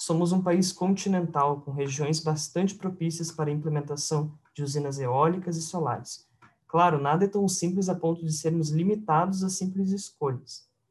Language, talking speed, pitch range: Portuguese, 160 wpm, 140-170 Hz